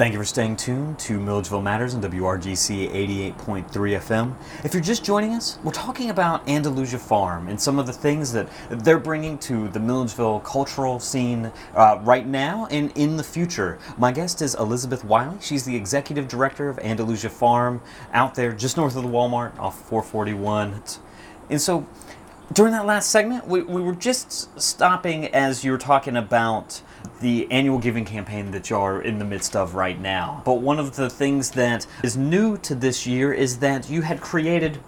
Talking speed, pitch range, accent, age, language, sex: 185 wpm, 110-155 Hz, American, 30-49, English, male